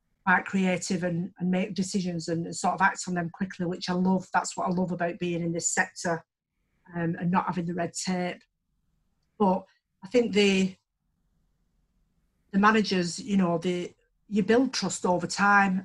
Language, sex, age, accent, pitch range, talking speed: English, female, 40-59, British, 170-200 Hz, 175 wpm